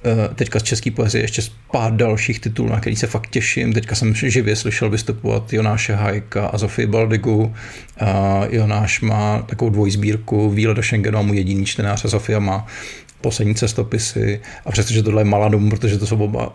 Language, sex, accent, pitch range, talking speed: Czech, male, native, 105-115 Hz, 190 wpm